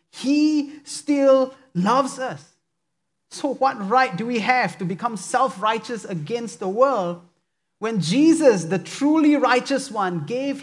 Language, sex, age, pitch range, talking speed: English, male, 30-49, 170-235 Hz, 130 wpm